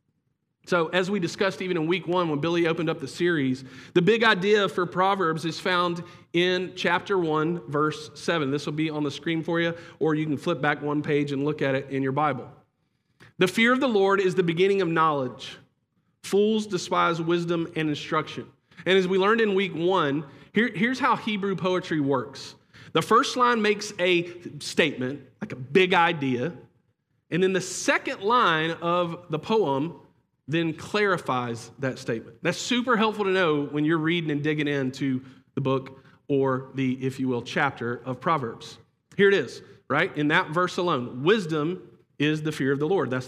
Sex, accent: male, American